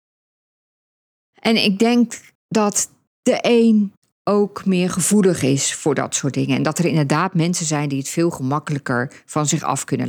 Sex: female